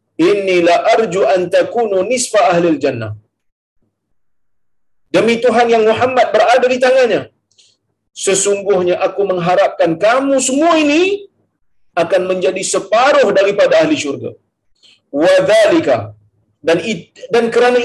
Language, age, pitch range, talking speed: Malayalam, 50-69, 165-250 Hz, 110 wpm